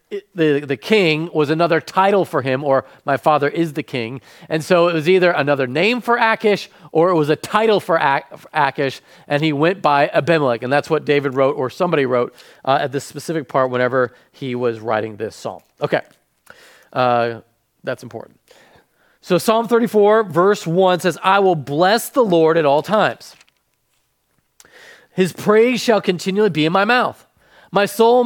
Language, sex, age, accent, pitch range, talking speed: English, male, 40-59, American, 150-205 Hz, 180 wpm